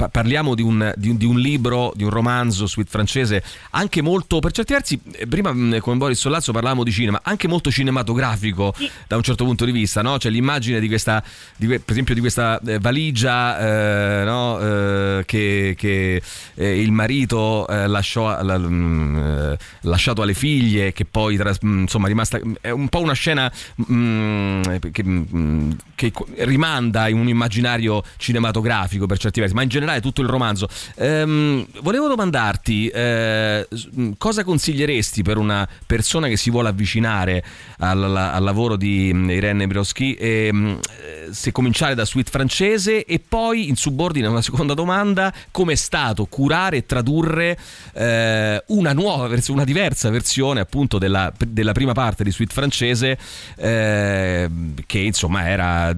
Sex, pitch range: male, 100-130 Hz